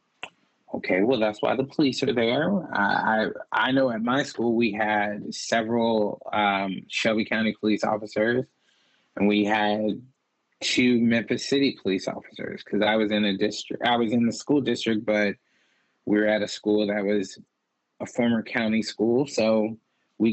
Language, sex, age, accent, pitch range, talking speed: English, male, 20-39, American, 105-130 Hz, 165 wpm